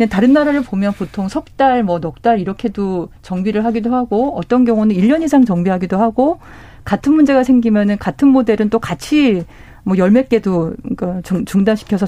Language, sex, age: Korean, female, 40-59